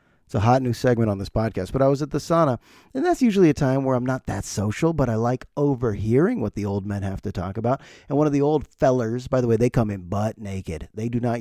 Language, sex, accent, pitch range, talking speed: English, male, American, 110-155 Hz, 280 wpm